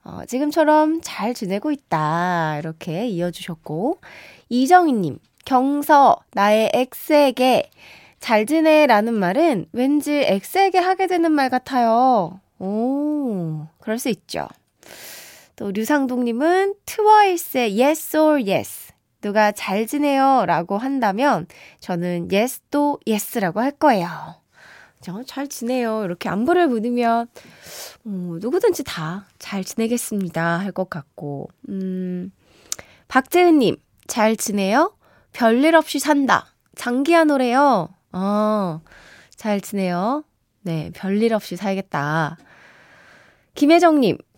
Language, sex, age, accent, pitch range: Korean, female, 20-39, native, 185-285 Hz